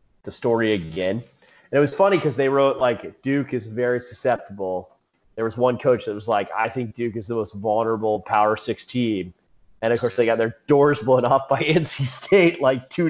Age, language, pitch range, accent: 30-49, English, 110-140 Hz, American